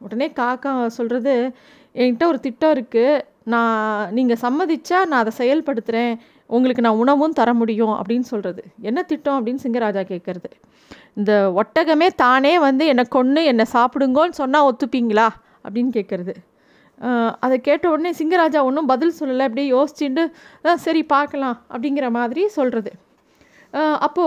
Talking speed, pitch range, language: 130 wpm, 240-310 Hz, Tamil